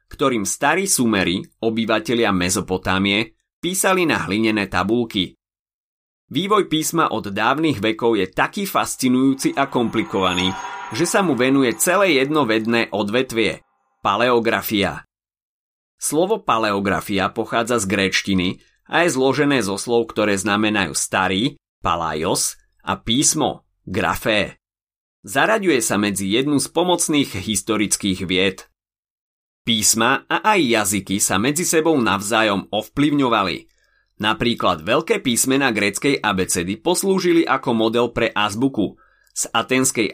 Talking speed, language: 115 wpm, Slovak